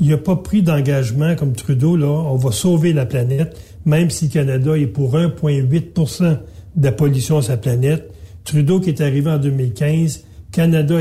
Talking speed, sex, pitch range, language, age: 175 wpm, male, 140-170 Hz, French, 60-79